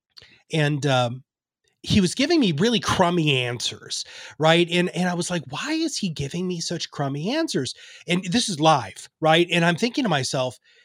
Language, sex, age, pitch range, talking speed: English, male, 30-49, 145-205 Hz, 185 wpm